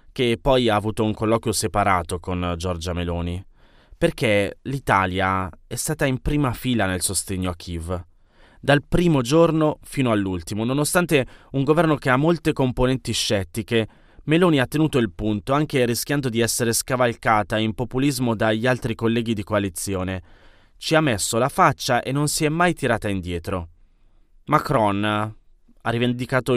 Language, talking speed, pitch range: Italian, 150 wpm, 100-130 Hz